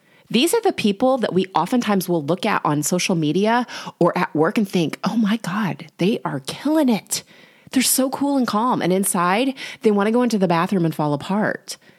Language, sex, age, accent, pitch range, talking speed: English, female, 30-49, American, 165-225 Hz, 205 wpm